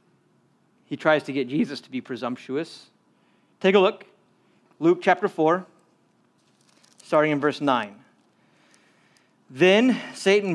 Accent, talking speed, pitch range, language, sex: American, 115 wpm, 175-275 Hz, English, male